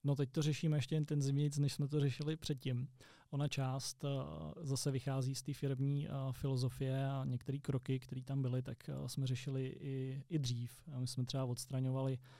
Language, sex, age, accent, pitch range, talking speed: Czech, male, 20-39, native, 130-140 Hz, 190 wpm